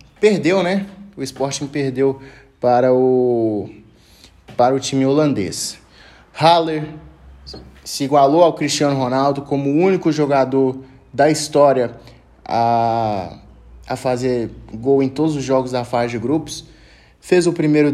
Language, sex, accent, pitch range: Portuguese, male, Brazilian, 120-155 Hz